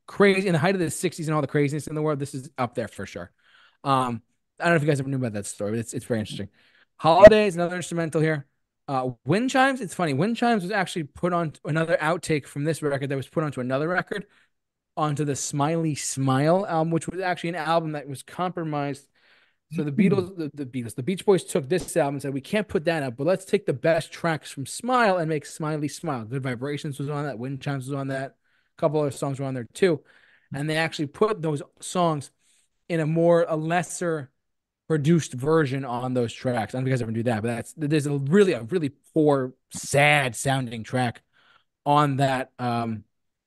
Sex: male